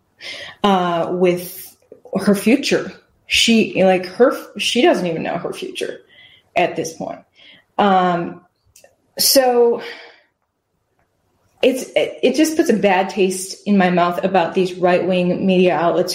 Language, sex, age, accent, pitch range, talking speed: English, female, 30-49, American, 180-205 Hz, 125 wpm